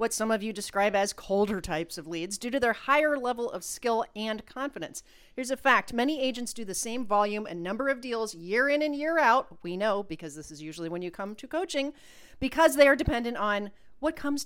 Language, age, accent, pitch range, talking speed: English, 40-59, American, 180-255 Hz, 225 wpm